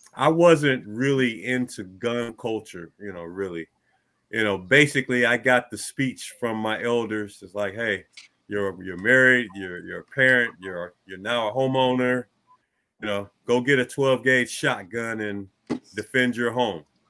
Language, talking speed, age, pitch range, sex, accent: English, 160 wpm, 30-49, 100-130 Hz, male, American